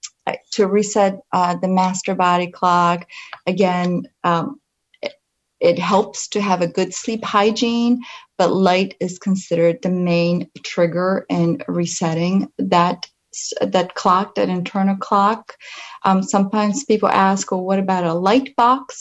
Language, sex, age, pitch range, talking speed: English, female, 30-49, 175-205 Hz, 135 wpm